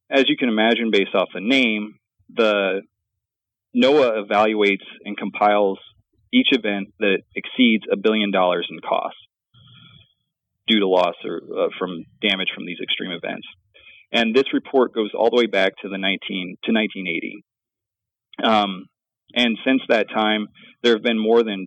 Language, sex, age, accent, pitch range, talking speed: English, male, 30-49, American, 100-120 Hz, 160 wpm